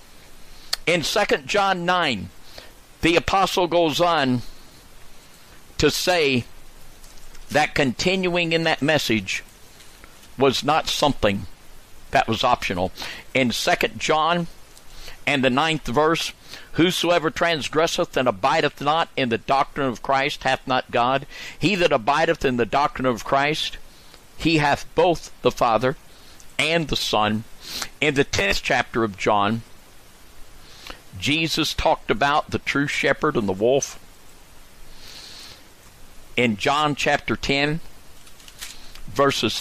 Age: 50-69